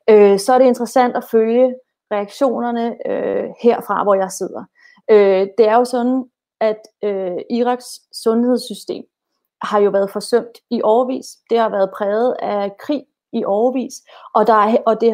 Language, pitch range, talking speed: Danish, 200-235 Hz, 135 wpm